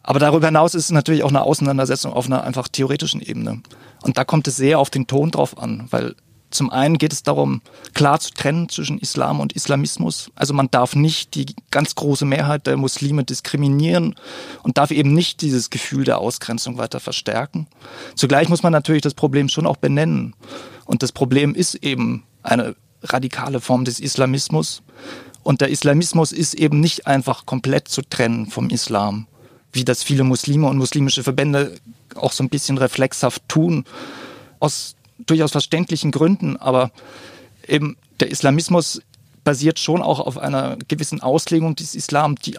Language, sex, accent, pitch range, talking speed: German, male, German, 130-155 Hz, 170 wpm